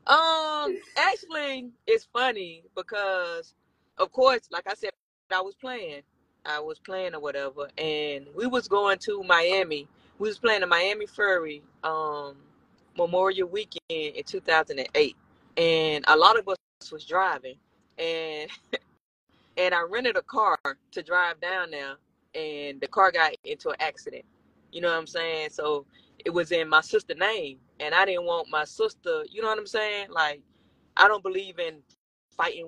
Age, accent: 20-39, American